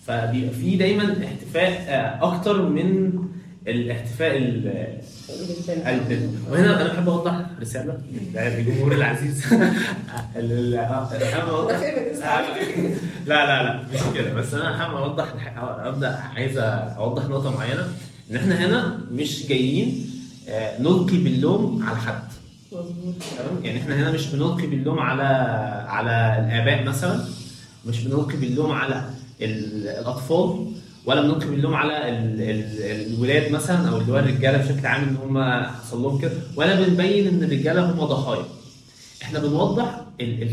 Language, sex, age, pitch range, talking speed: Arabic, male, 20-39, 125-165 Hz, 115 wpm